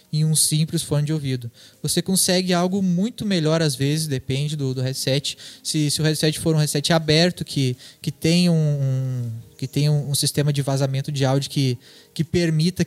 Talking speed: 190 wpm